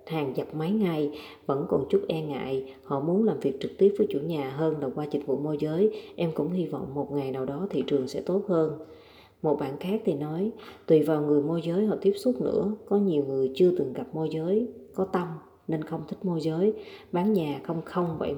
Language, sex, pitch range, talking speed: Vietnamese, female, 145-195 Hz, 235 wpm